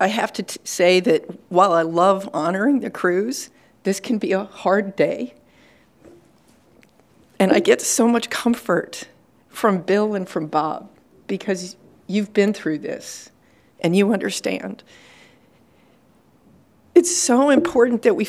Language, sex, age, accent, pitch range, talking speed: English, female, 50-69, American, 170-205 Hz, 135 wpm